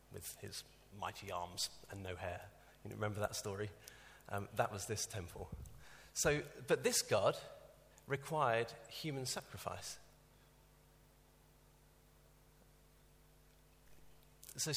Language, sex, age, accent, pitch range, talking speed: English, male, 40-59, British, 100-130 Hz, 100 wpm